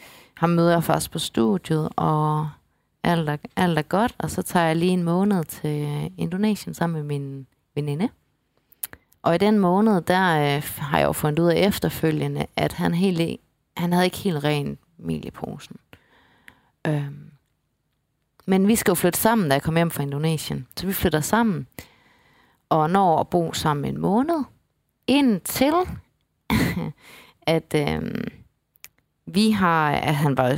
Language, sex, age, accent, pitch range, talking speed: Danish, female, 30-49, native, 145-195 Hz, 155 wpm